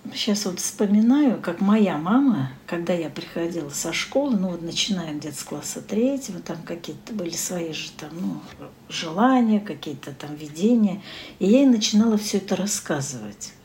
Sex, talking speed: female, 160 wpm